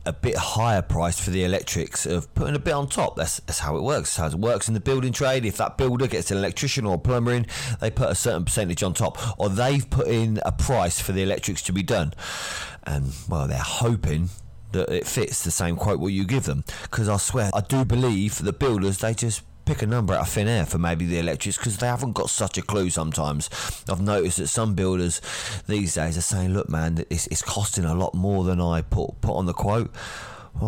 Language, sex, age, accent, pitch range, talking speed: English, male, 30-49, British, 90-115 Hz, 240 wpm